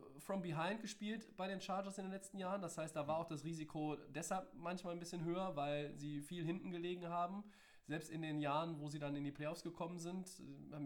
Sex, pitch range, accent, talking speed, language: male, 135-165 Hz, German, 225 wpm, German